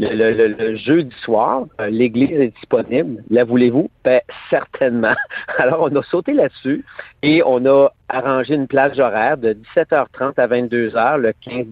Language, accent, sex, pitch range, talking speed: French, Canadian, male, 125-160 Hz, 155 wpm